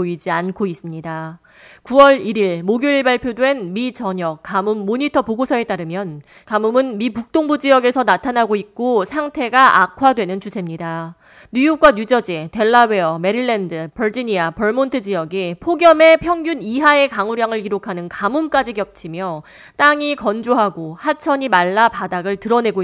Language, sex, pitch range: Korean, female, 185-270 Hz